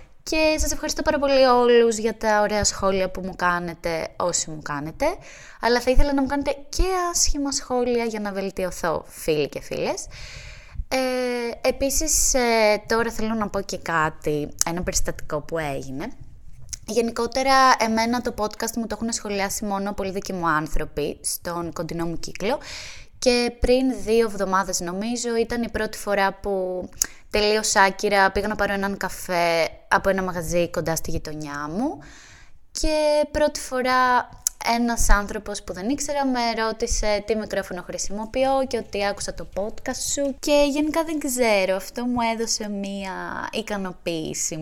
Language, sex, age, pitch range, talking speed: Greek, female, 20-39, 175-245 Hz, 150 wpm